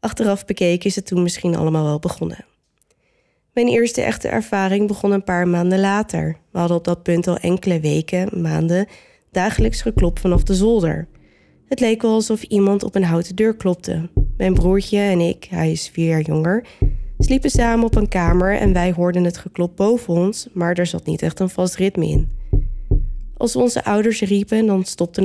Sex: female